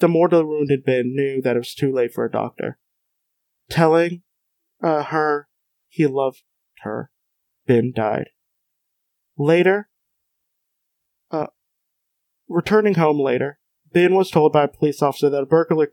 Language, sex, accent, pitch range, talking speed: English, male, American, 135-165 Hz, 135 wpm